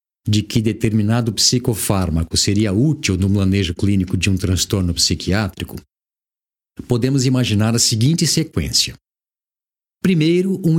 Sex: male